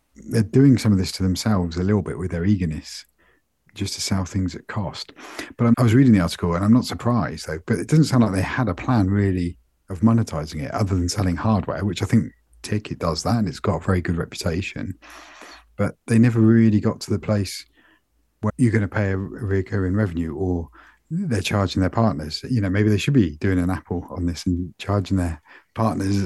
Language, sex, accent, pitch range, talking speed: English, male, British, 90-110 Hz, 225 wpm